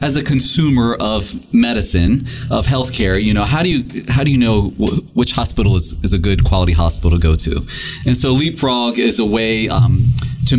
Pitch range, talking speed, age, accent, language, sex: 90-125 Hz, 205 wpm, 30-49, American, English, male